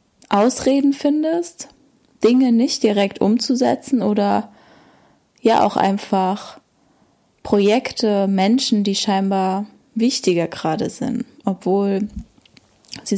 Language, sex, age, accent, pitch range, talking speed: German, female, 10-29, German, 200-245 Hz, 85 wpm